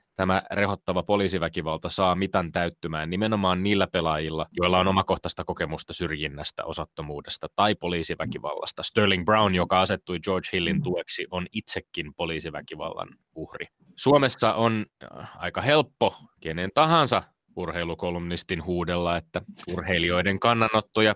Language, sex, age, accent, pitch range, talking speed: Finnish, male, 20-39, native, 85-105 Hz, 115 wpm